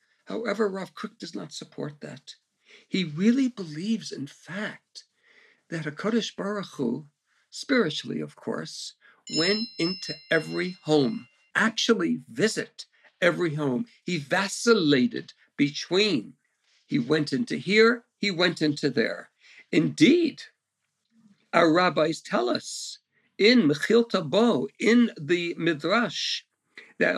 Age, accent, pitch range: 60-79, American, 165-230 Hz